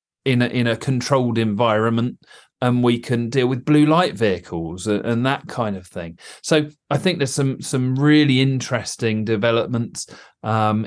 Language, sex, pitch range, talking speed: English, male, 110-135 Hz, 165 wpm